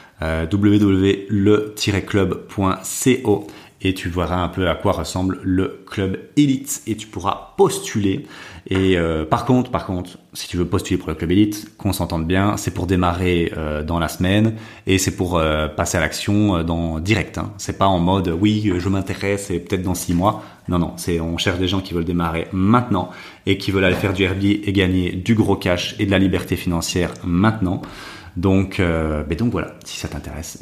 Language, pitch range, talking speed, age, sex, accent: French, 90-105 Hz, 200 wpm, 30-49, male, French